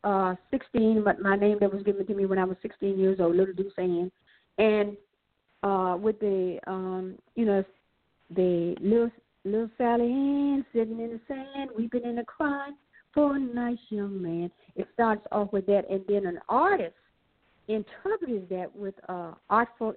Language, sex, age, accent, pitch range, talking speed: English, female, 50-69, American, 185-230 Hz, 175 wpm